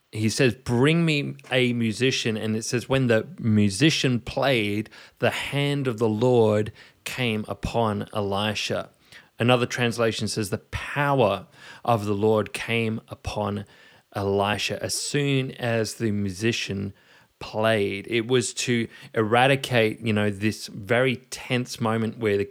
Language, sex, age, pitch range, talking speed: English, male, 30-49, 105-125 Hz, 135 wpm